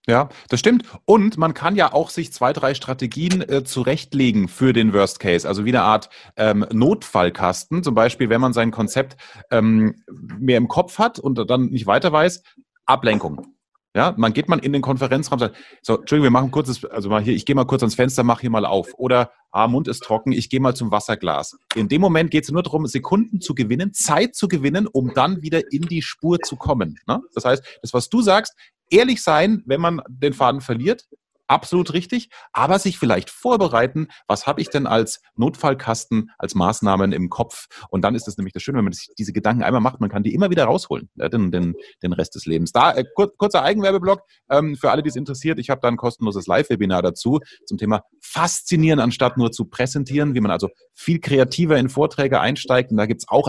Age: 30-49